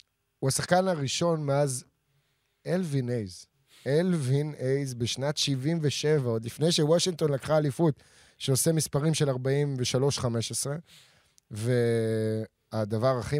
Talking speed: 85 wpm